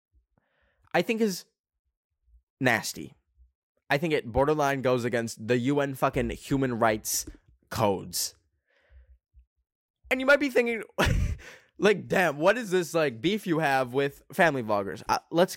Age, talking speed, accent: 20-39, 135 wpm, American